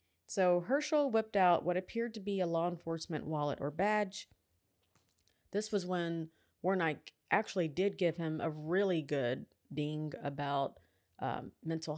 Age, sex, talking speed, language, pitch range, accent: 30-49, female, 145 wpm, English, 145-195 Hz, American